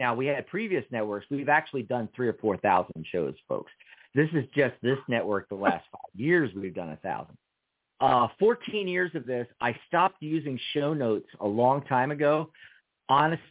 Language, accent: English, American